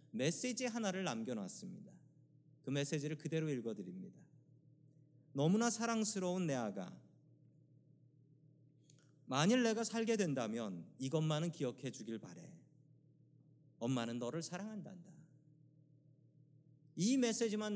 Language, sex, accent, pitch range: Korean, male, native, 140-175 Hz